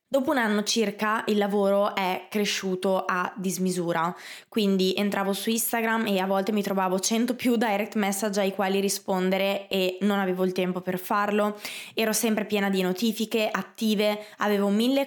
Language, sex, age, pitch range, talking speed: Italian, female, 20-39, 190-220 Hz, 165 wpm